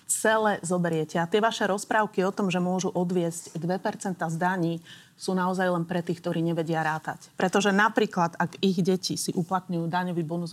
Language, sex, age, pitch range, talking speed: Slovak, female, 30-49, 170-200 Hz, 175 wpm